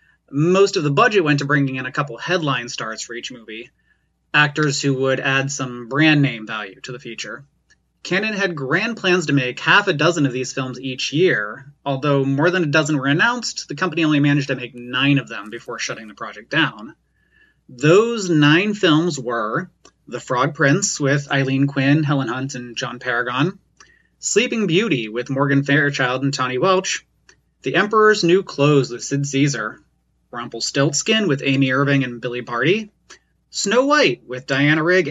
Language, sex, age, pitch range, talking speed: English, male, 20-39, 130-170 Hz, 175 wpm